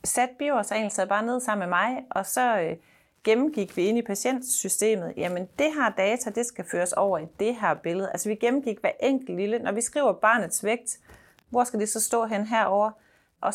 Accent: native